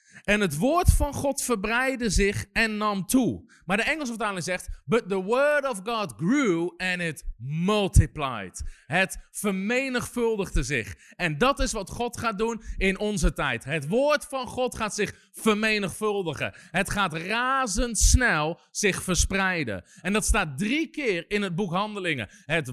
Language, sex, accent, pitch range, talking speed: Dutch, male, Dutch, 145-230 Hz, 155 wpm